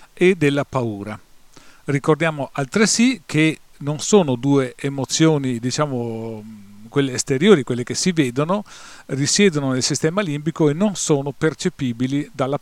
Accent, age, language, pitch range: native, 40-59, Italian, 130-165 Hz